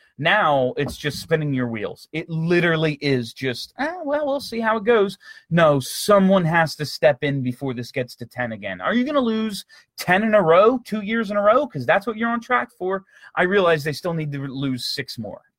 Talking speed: 225 wpm